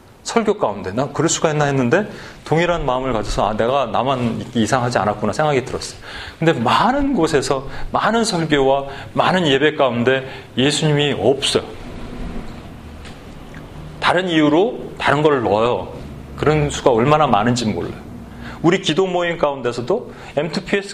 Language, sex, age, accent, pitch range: Korean, male, 40-59, native, 125-185 Hz